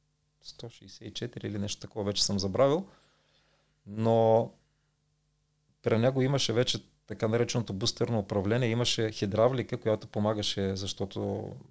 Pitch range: 105-135 Hz